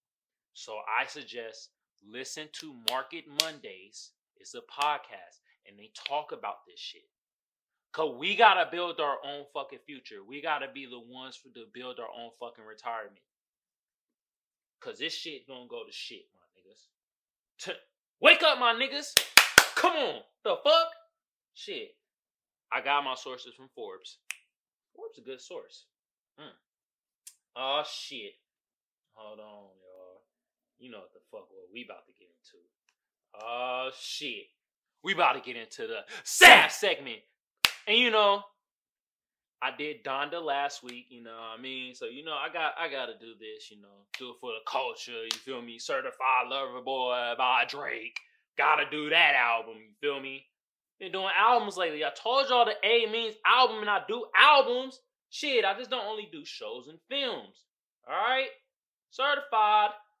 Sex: male